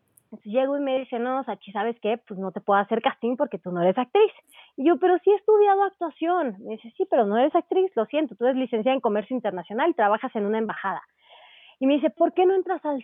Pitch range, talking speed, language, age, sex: 220-290 Hz, 260 wpm, Portuguese, 30-49, female